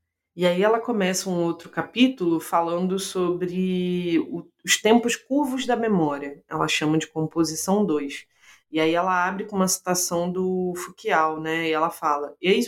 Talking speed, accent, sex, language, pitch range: 150 wpm, Brazilian, female, Portuguese, 170-205 Hz